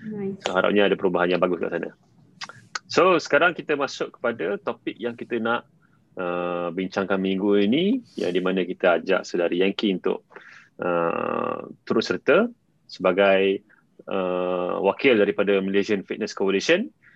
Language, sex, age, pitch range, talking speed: Malay, male, 20-39, 95-120 Hz, 125 wpm